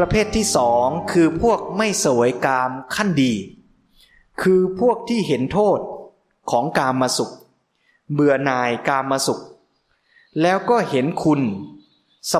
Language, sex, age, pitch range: Thai, male, 20-39, 130-180 Hz